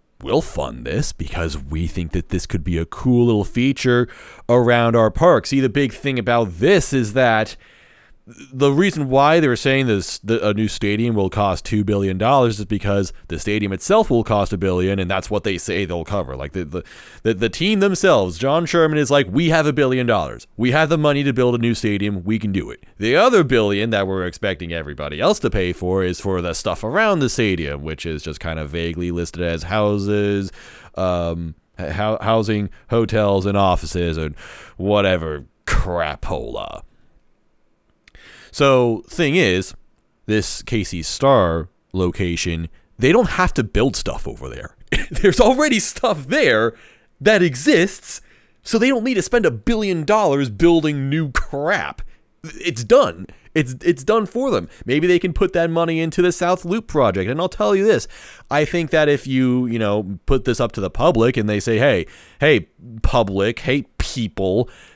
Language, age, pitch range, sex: English, 30-49, 95-140 Hz, male